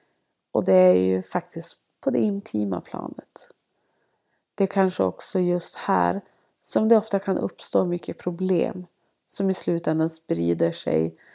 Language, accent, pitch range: Swedish, native, 160-195 Hz